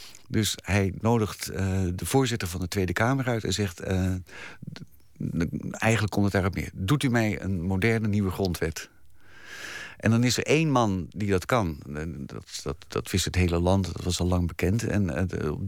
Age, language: 50-69, Dutch